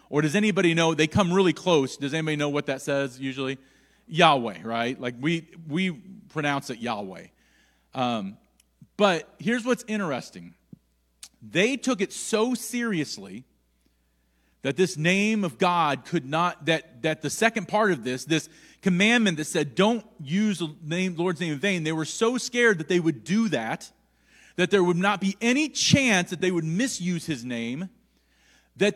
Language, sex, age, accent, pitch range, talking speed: English, male, 40-59, American, 150-225 Hz, 170 wpm